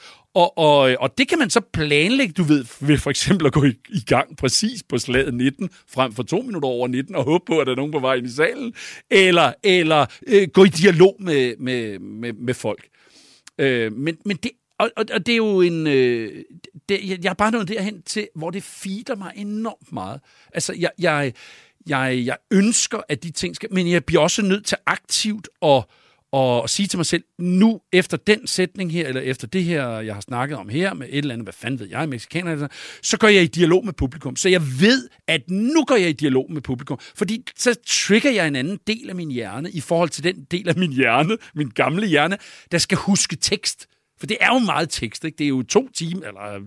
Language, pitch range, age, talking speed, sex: Danish, 135-200 Hz, 50-69, 230 wpm, male